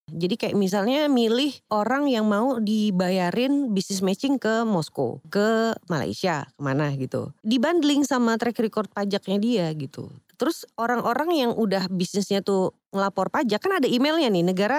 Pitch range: 155-230 Hz